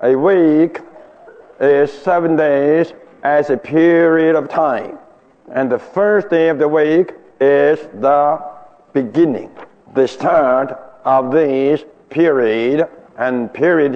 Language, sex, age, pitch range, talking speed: English, male, 60-79, 140-170 Hz, 115 wpm